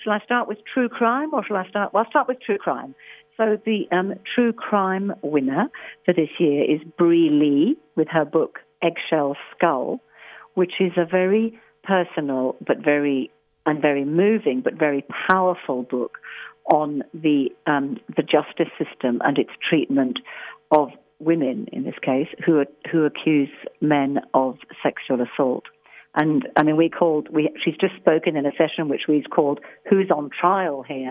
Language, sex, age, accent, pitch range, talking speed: English, female, 50-69, British, 150-190 Hz, 170 wpm